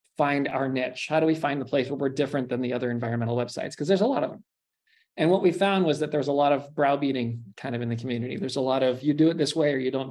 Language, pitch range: English, 130-155 Hz